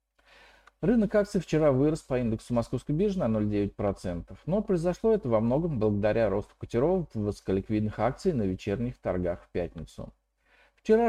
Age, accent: 50-69, native